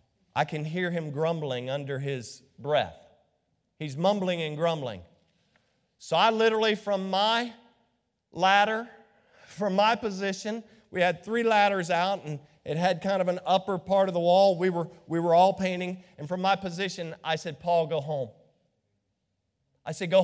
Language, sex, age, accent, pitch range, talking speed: English, male, 40-59, American, 150-200 Hz, 165 wpm